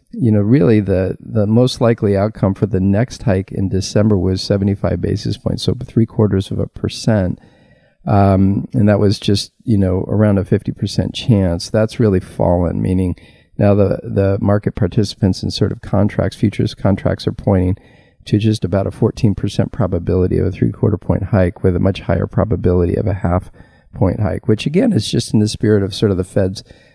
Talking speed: 190 wpm